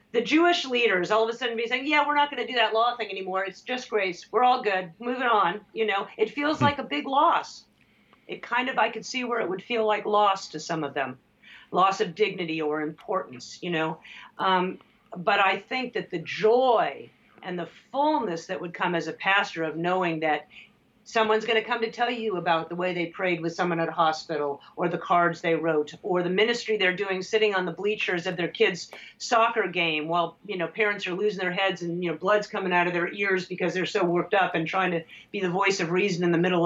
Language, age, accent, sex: English, 50-69, American, female